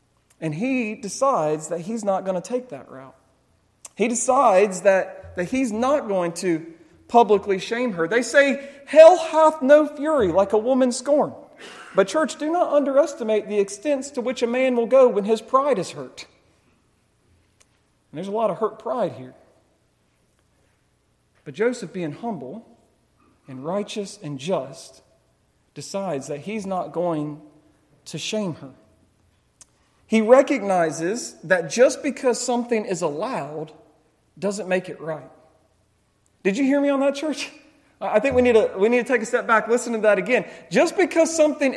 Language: English